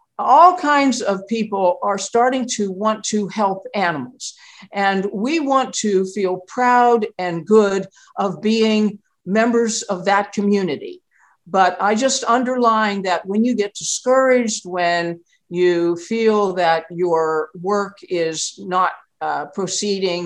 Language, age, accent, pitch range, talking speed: English, 50-69, American, 180-230 Hz, 130 wpm